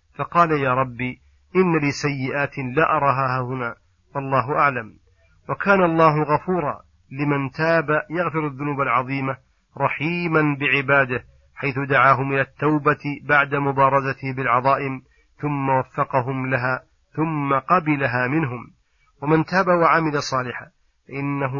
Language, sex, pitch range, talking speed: Arabic, male, 130-150 Hz, 105 wpm